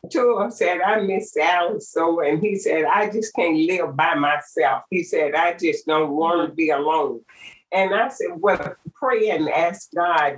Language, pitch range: English, 155-220 Hz